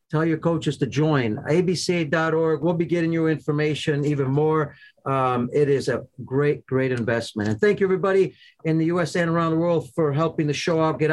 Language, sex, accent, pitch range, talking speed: English, male, American, 135-160 Hz, 205 wpm